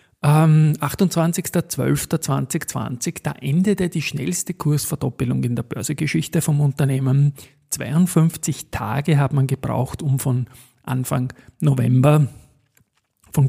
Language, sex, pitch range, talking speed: German, male, 130-150 Hz, 90 wpm